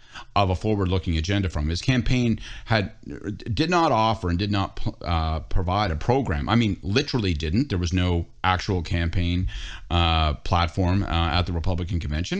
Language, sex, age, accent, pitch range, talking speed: English, male, 40-59, American, 90-120 Hz, 165 wpm